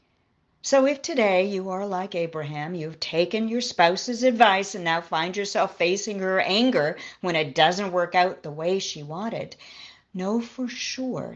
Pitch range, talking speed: 170-230 Hz, 165 wpm